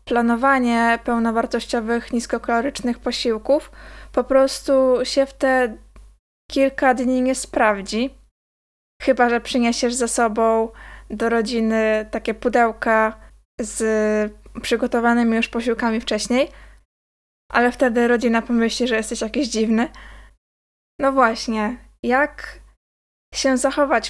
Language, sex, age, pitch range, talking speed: Polish, female, 20-39, 230-270 Hz, 100 wpm